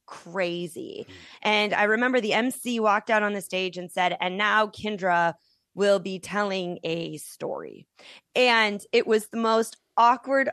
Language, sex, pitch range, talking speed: English, female, 180-230 Hz, 155 wpm